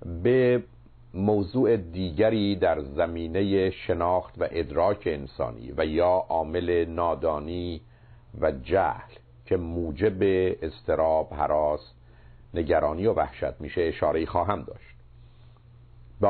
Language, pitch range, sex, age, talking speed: Persian, 80-115 Hz, male, 50-69, 100 wpm